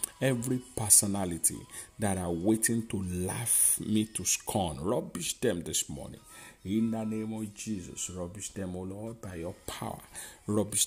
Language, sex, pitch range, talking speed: English, male, 95-110 Hz, 150 wpm